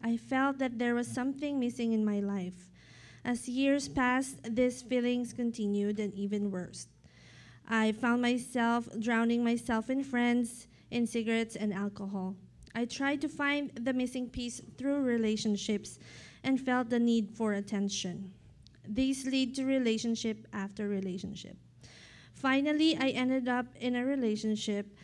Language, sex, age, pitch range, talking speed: English, female, 20-39, 205-250 Hz, 140 wpm